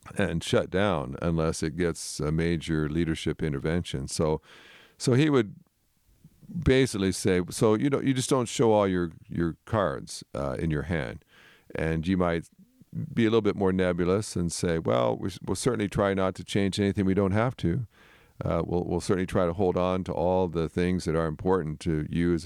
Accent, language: American, English